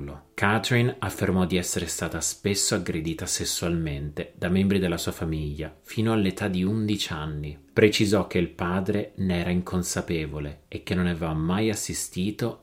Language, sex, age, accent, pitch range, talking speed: Italian, male, 30-49, native, 80-100 Hz, 145 wpm